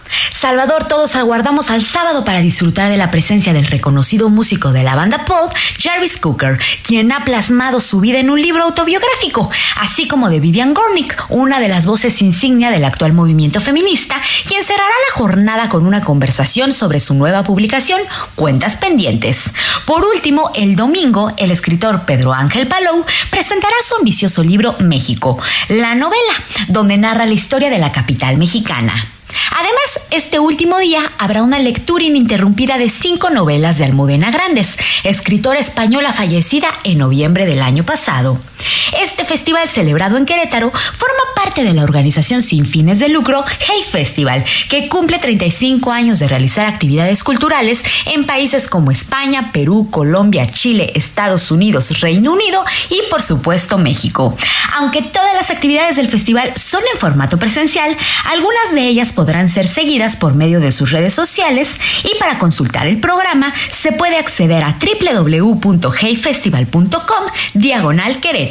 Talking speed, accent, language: 150 wpm, Mexican, Spanish